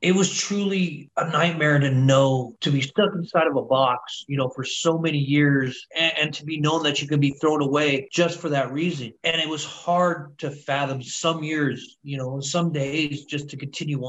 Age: 30-49